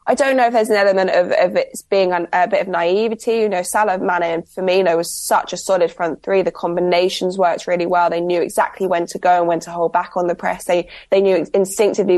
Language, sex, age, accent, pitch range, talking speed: English, female, 20-39, British, 175-200 Hz, 245 wpm